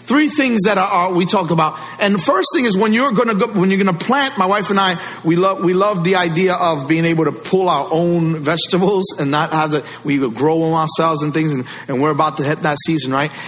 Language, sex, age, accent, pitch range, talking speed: English, male, 40-59, American, 150-200 Hz, 265 wpm